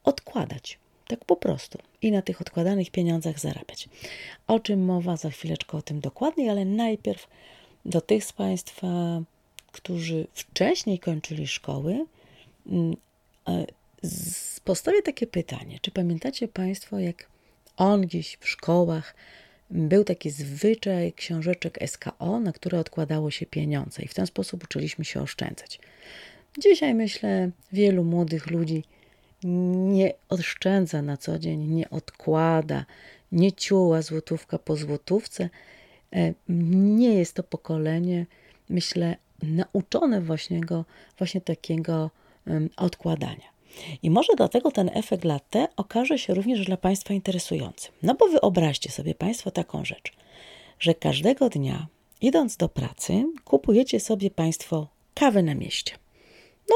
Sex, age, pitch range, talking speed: female, 30-49, 160-200 Hz, 120 wpm